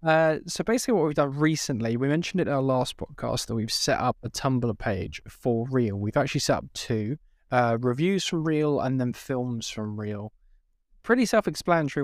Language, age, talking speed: English, 20-39, 195 wpm